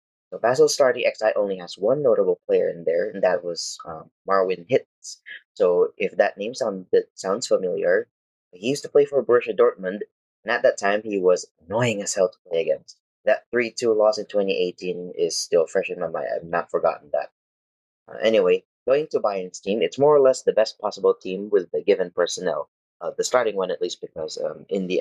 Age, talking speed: 20-39, 200 wpm